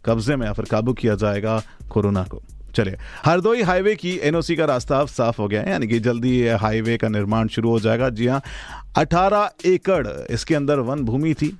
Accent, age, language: native, 40-59, Hindi